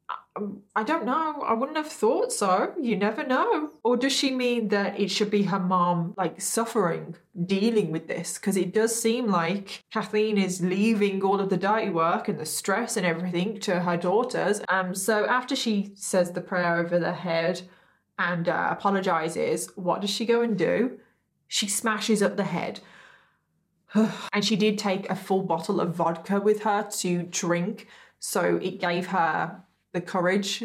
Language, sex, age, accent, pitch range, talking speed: English, female, 20-39, British, 180-215 Hz, 175 wpm